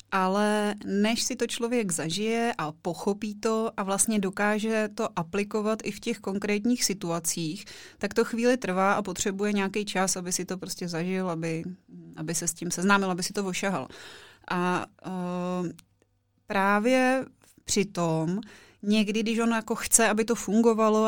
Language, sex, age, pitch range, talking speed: Czech, female, 30-49, 195-230 Hz, 155 wpm